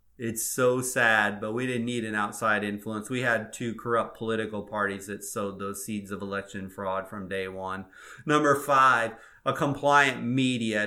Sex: male